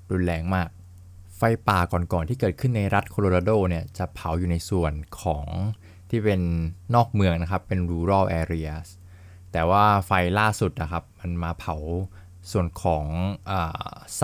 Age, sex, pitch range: 20-39, male, 90-100 Hz